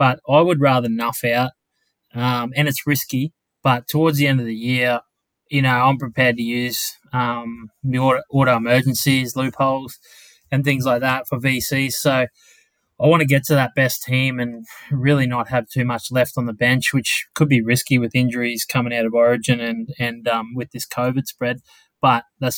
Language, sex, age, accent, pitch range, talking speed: English, male, 20-39, Australian, 120-140 Hz, 190 wpm